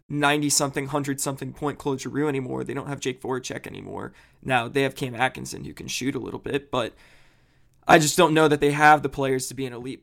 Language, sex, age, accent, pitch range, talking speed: English, male, 20-39, American, 135-150 Hz, 215 wpm